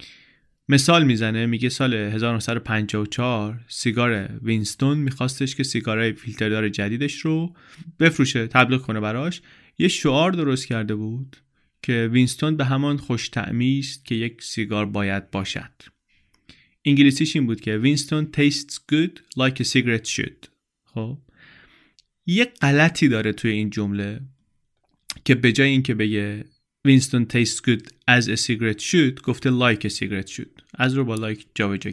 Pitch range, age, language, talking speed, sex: 110-140 Hz, 30-49, Persian, 130 wpm, male